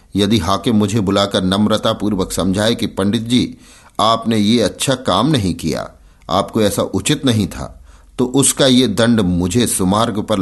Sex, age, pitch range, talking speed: male, 50-69, 85-125 Hz, 155 wpm